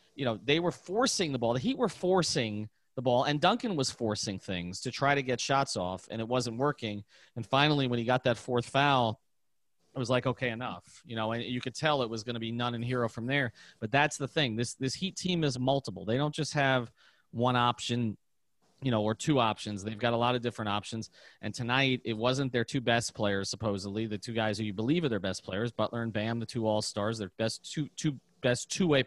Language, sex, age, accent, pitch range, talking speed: English, male, 30-49, American, 115-145 Hz, 240 wpm